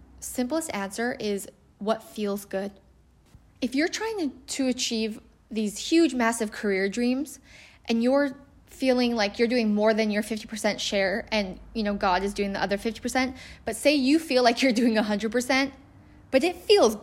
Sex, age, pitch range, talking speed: female, 10-29, 215-285 Hz, 165 wpm